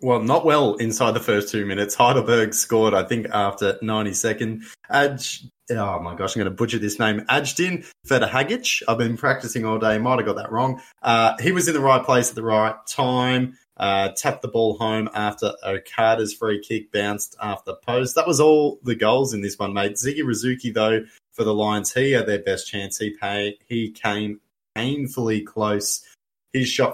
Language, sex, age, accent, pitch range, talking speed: English, male, 20-39, Australian, 105-130 Hz, 195 wpm